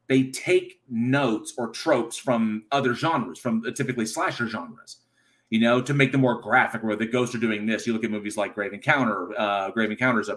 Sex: male